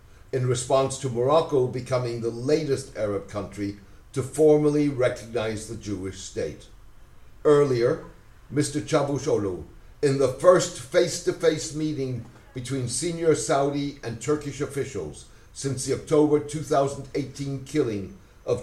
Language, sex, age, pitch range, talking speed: English, male, 60-79, 110-145 Hz, 115 wpm